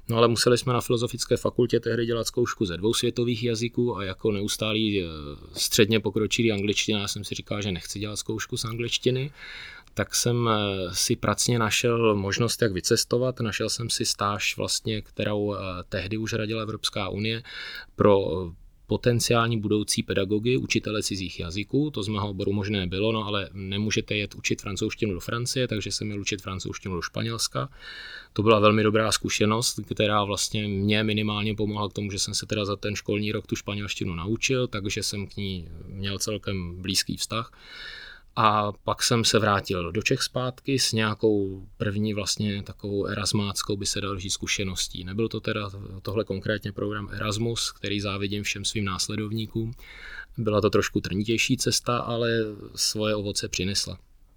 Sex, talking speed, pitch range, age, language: male, 160 wpm, 100-115 Hz, 30-49, Czech